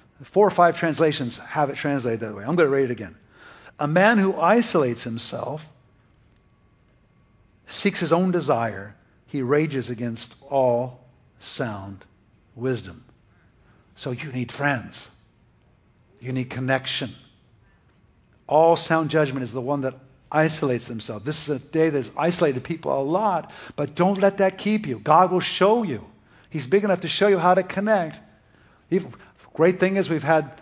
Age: 50-69